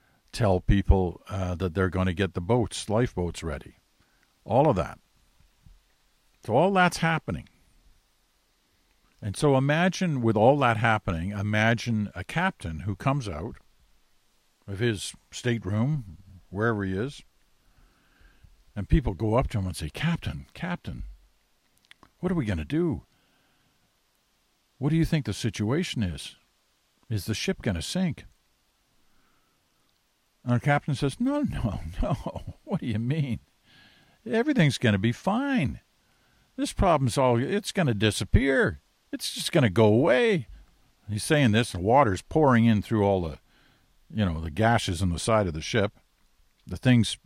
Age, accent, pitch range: 60-79, American, 95-145 Hz